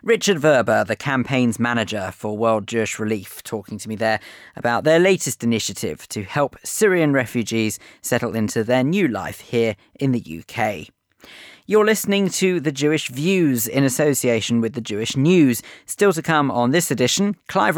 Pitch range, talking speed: 115-155 Hz, 165 wpm